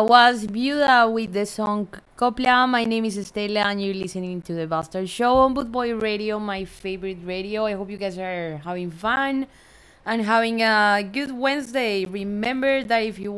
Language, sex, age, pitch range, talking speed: English, female, 20-39, 190-245 Hz, 180 wpm